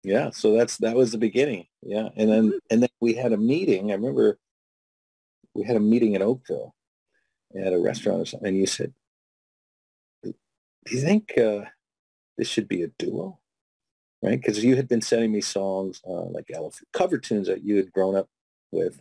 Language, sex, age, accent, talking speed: English, male, 40-59, American, 185 wpm